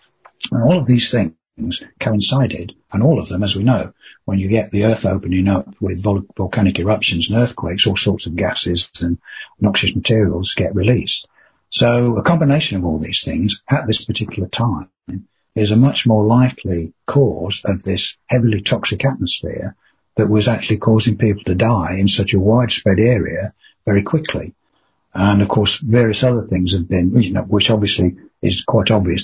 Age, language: 60-79, English